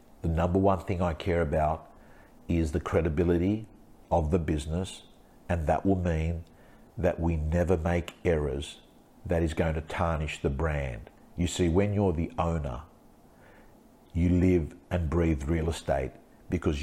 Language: English